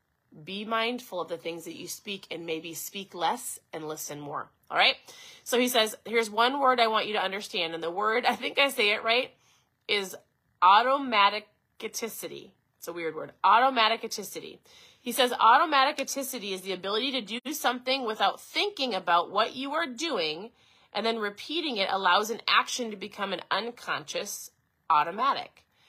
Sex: female